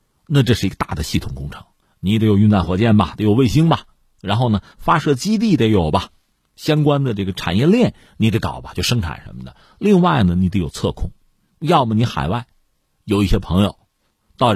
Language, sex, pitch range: Chinese, male, 90-140 Hz